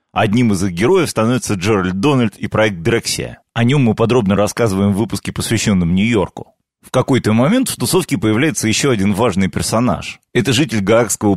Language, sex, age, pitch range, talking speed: Russian, male, 30-49, 100-125 Hz, 170 wpm